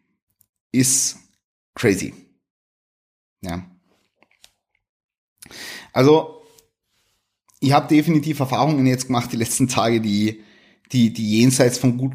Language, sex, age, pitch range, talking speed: German, male, 30-49, 100-125 Hz, 95 wpm